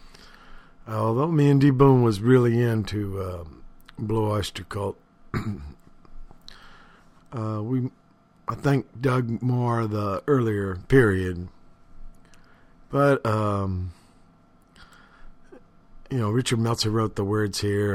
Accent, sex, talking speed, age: American, male, 105 wpm, 50-69